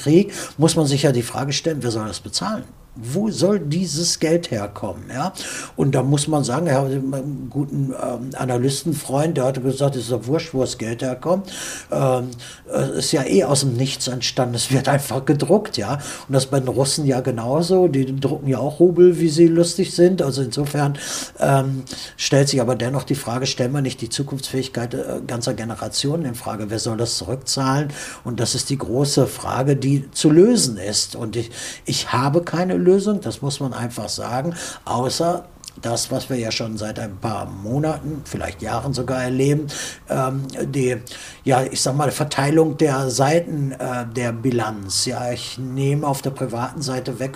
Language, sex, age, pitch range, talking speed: German, male, 60-79, 120-145 Hz, 190 wpm